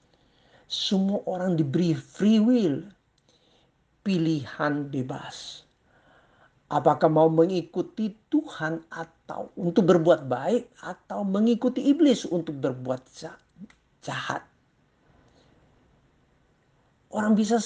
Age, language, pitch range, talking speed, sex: 50-69, Indonesian, 150-185 Hz, 80 wpm, male